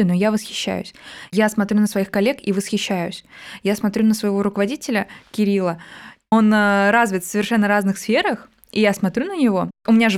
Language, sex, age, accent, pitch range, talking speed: Russian, female, 20-39, native, 190-225 Hz, 175 wpm